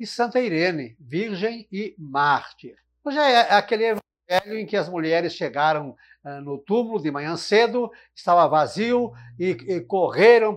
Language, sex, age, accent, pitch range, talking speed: Portuguese, male, 60-79, Brazilian, 165-215 Hz, 135 wpm